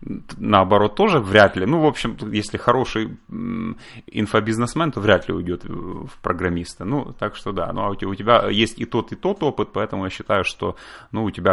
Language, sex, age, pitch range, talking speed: Russian, male, 30-49, 90-120 Hz, 195 wpm